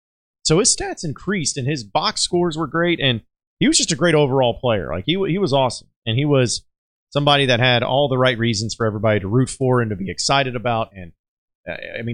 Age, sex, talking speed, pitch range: 30-49, male, 225 wpm, 110-145 Hz